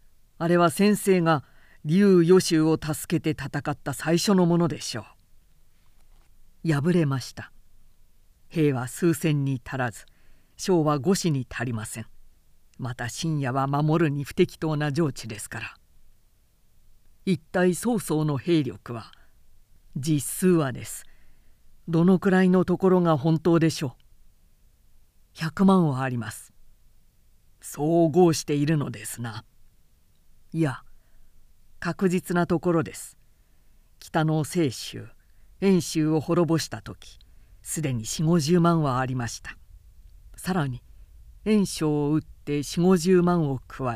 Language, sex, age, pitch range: Japanese, female, 50-69, 110-170 Hz